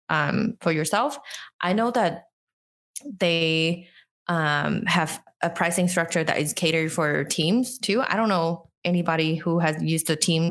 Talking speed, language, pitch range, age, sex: 155 wpm, English, 155-185 Hz, 20-39, female